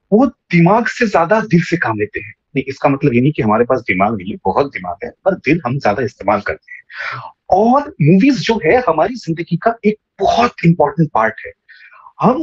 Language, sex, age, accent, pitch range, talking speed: Hindi, male, 30-49, native, 170-245 Hz, 210 wpm